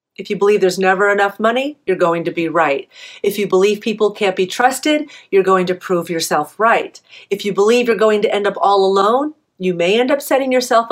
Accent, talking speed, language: American, 225 wpm, English